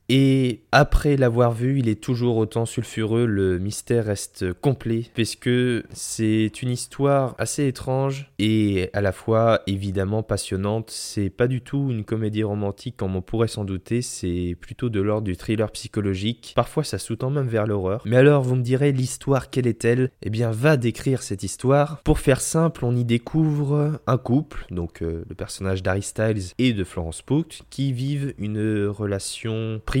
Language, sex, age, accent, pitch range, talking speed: French, male, 20-39, French, 100-130 Hz, 175 wpm